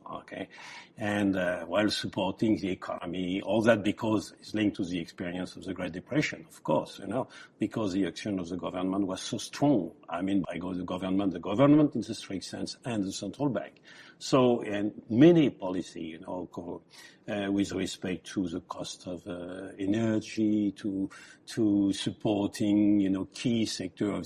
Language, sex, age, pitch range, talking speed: English, male, 50-69, 95-115 Hz, 175 wpm